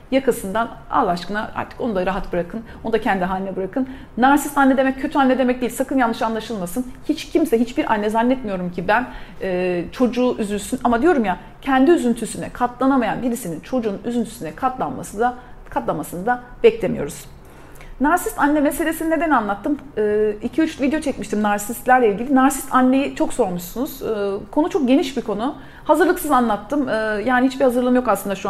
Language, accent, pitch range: Turkish, native, 215-285 Hz